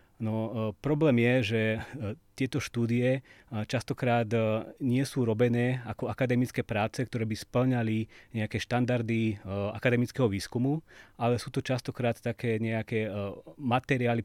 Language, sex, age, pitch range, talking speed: Slovak, male, 30-49, 110-130 Hz, 115 wpm